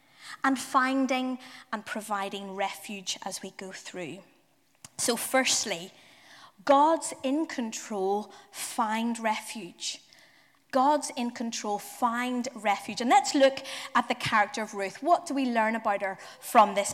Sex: female